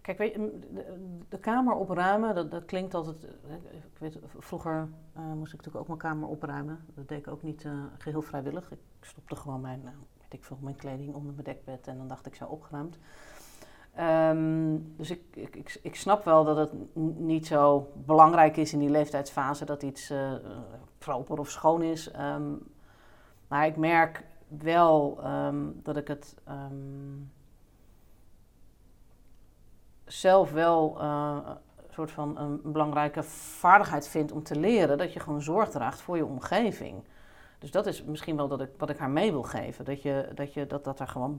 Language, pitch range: Dutch, 140-160 Hz